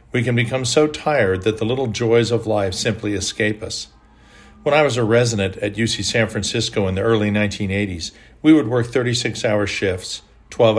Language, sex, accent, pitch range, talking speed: English, male, American, 105-120 Hz, 185 wpm